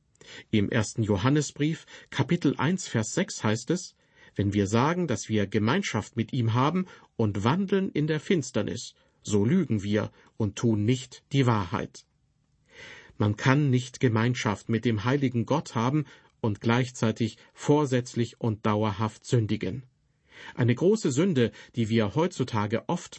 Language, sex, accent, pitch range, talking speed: German, male, German, 110-135 Hz, 135 wpm